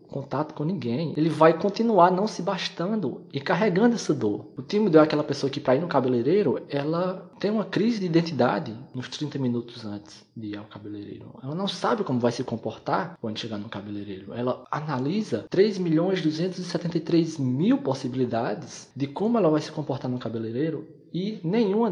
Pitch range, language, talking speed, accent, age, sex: 115-160 Hz, Portuguese, 175 wpm, Brazilian, 20-39, male